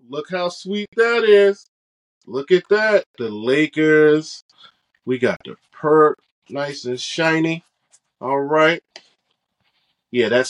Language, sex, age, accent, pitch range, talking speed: English, male, 20-39, American, 125-155 Hz, 115 wpm